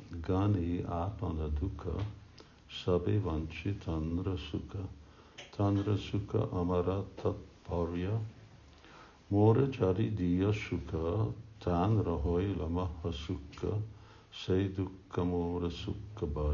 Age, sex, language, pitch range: 60-79, male, Hungarian, 85-105 Hz